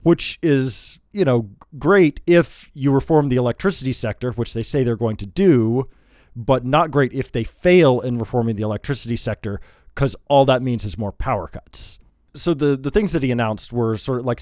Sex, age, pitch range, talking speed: male, 20-39, 110-135 Hz, 200 wpm